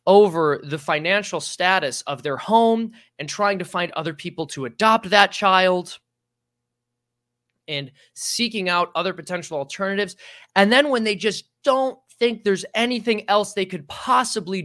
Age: 20-39